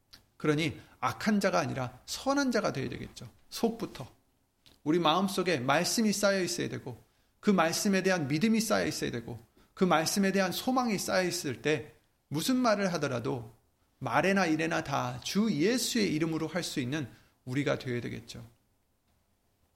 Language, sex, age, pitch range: Korean, male, 30-49, 130-195 Hz